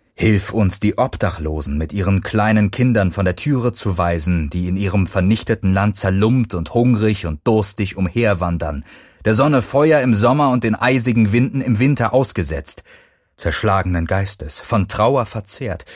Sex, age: male, 30-49